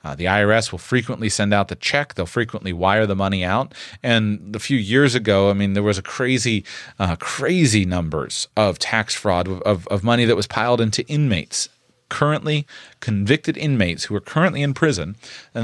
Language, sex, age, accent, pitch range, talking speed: English, male, 30-49, American, 95-115 Hz, 190 wpm